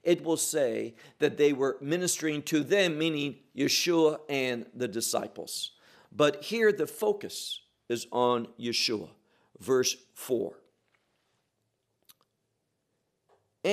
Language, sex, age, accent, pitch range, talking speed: English, male, 50-69, American, 135-195 Hz, 100 wpm